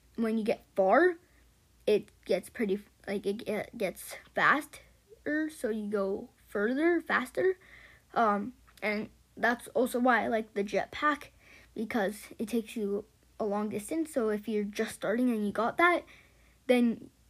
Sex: female